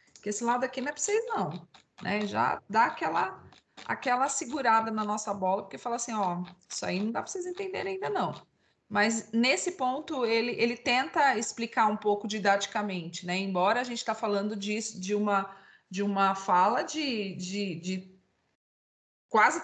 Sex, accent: female, Brazilian